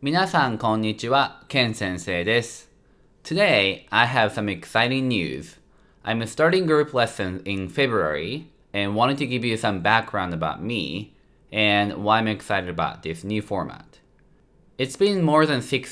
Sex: male